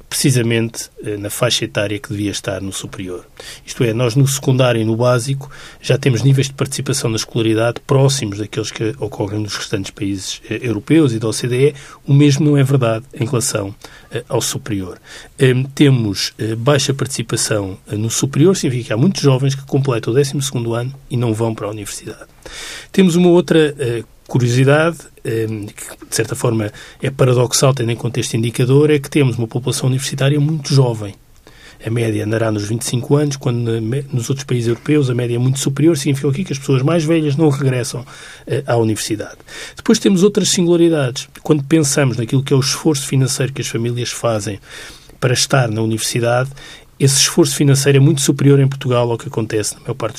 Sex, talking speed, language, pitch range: male, 185 wpm, Portuguese, 115-145 Hz